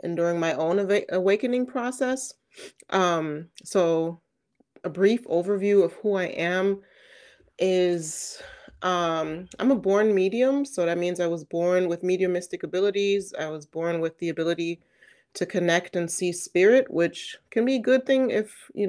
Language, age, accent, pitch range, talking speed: English, 30-49, American, 170-205 Hz, 160 wpm